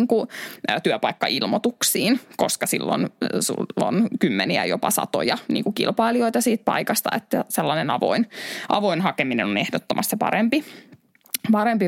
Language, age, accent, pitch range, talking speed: Finnish, 20-39, native, 185-245 Hz, 105 wpm